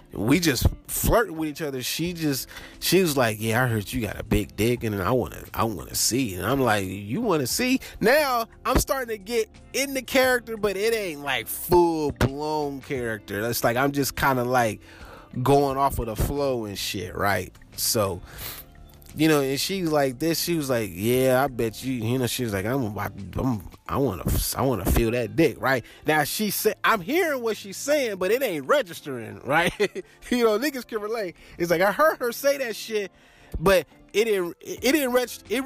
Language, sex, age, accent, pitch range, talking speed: English, male, 20-39, American, 130-215 Hz, 210 wpm